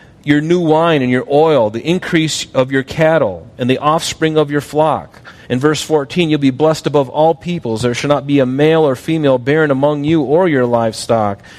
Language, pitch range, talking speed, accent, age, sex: English, 115-150 Hz, 205 wpm, American, 40-59, male